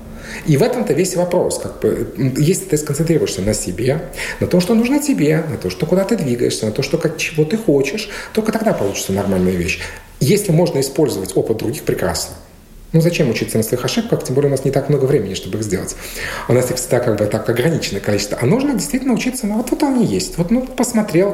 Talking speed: 215 wpm